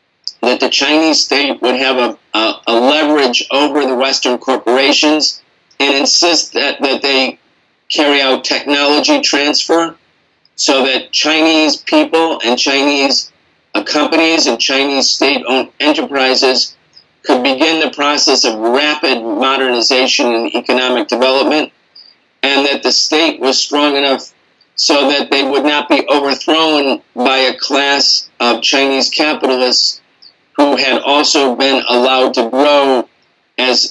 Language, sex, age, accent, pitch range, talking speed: English, male, 40-59, American, 130-150 Hz, 125 wpm